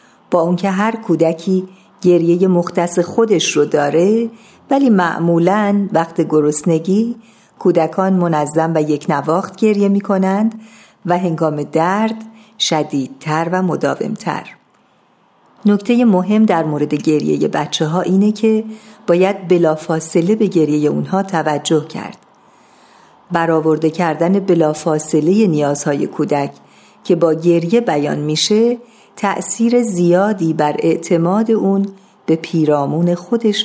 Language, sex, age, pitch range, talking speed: Persian, female, 50-69, 165-210 Hz, 110 wpm